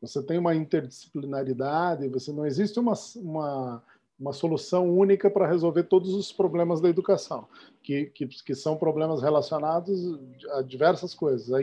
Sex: male